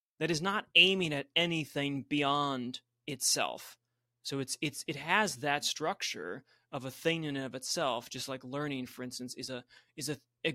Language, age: English, 30-49